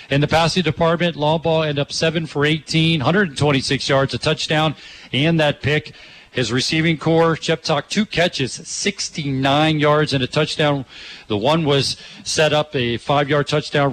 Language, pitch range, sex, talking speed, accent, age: English, 125-155 Hz, male, 165 wpm, American, 40-59